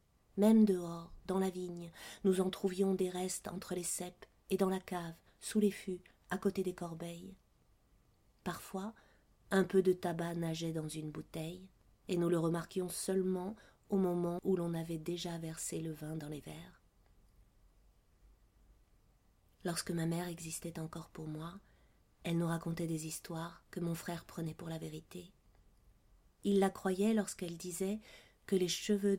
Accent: French